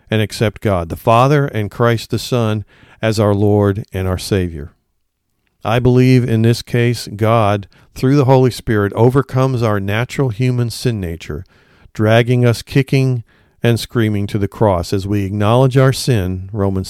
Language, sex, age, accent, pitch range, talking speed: English, male, 50-69, American, 100-125 Hz, 160 wpm